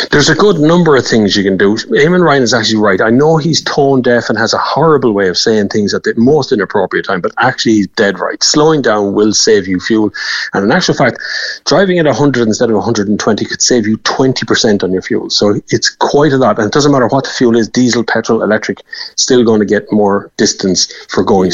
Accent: Irish